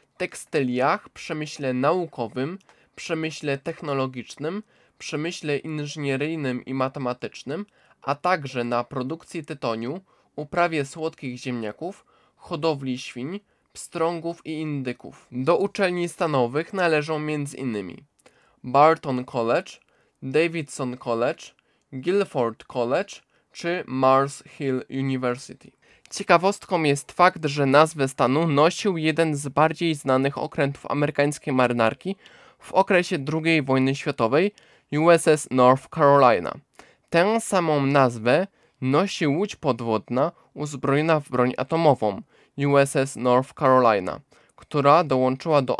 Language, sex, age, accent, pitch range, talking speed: Polish, male, 20-39, native, 130-160 Hz, 100 wpm